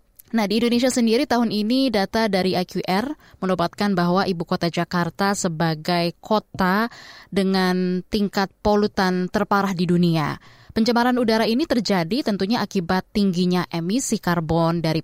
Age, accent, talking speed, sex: 20-39, native, 130 wpm, female